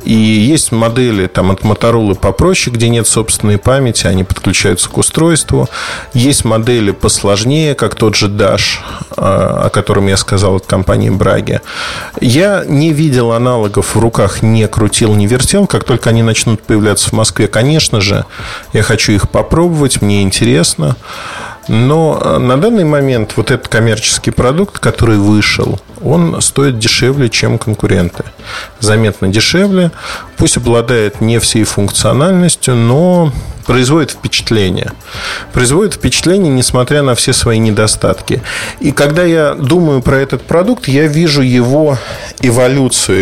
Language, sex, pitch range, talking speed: Russian, male, 110-140 Hz, 135 wpm